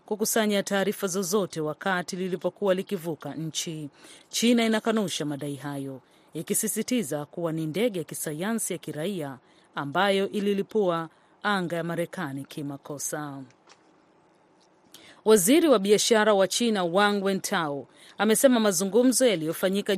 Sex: female